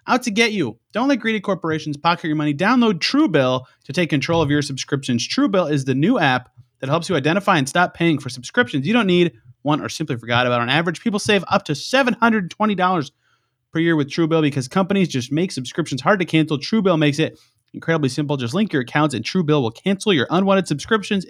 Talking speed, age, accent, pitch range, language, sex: 215 wpm, 30-49, American, 145-195 Hz, English, male